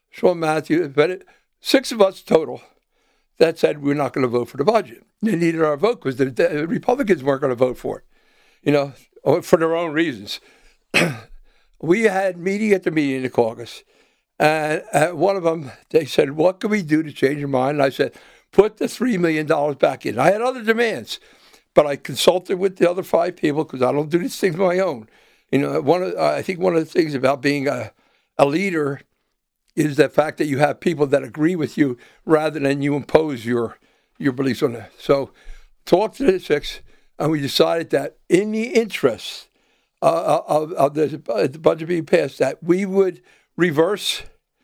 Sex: male